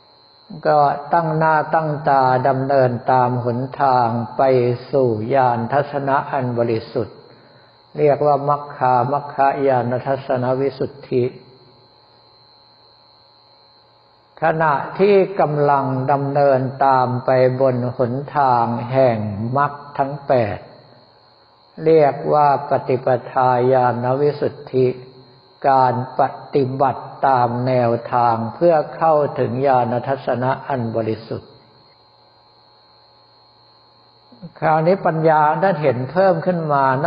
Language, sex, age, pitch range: Thai, male, 60-79, 120-145 Hz